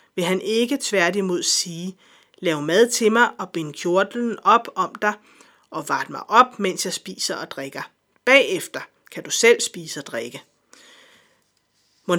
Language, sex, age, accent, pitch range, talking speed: Danish, female, 30-49, native, 175-230 Hz, 160 wpm